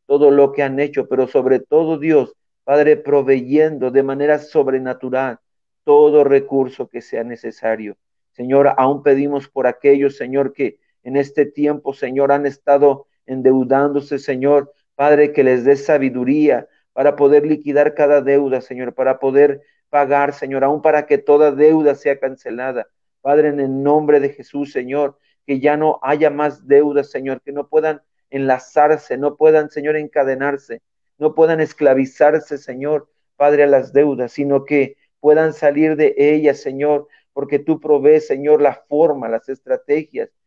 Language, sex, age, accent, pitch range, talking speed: Spanish, male, 40-59, Mexican, 135-150 Hz, 150 wpm